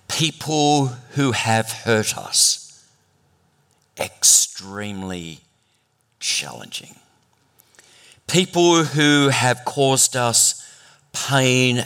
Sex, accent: male, Australian